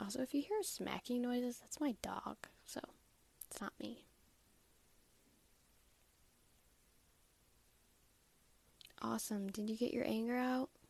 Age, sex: 10-29, female